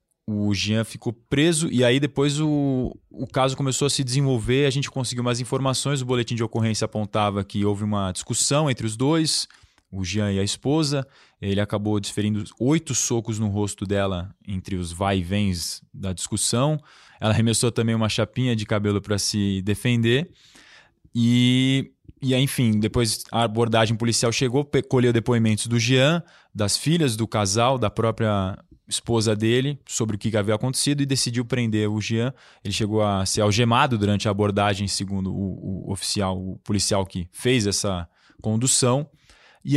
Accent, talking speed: Brazilian, 165 wpm